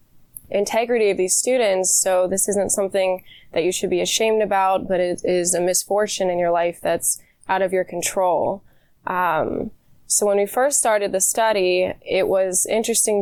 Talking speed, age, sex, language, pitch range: 170 wpm, 20-39, female, English, 180-205 Hz